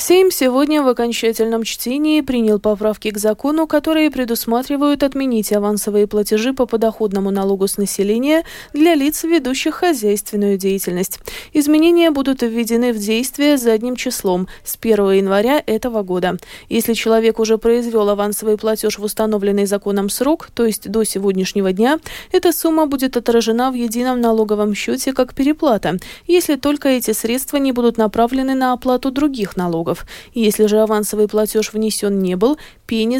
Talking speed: 145 wpm